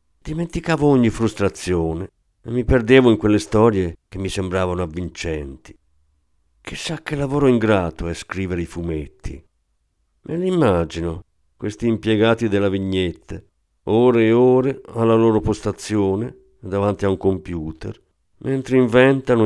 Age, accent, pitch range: 50-69, native, 85-130 Hz